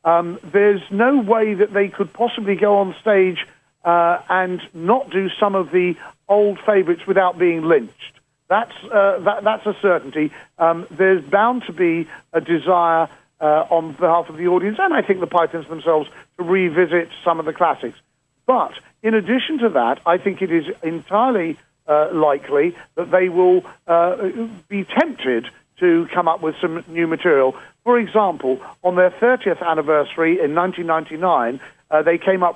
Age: 50-69